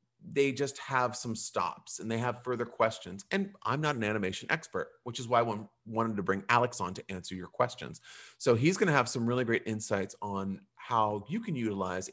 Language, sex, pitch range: English, male, 110-140 Hz